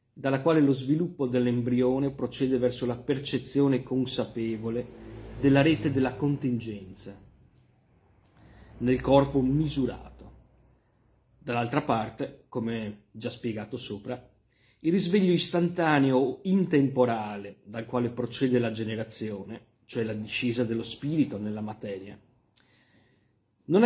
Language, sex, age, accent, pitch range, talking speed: Italian, male, 30-49, native, 110-135 Hz, 105 wpm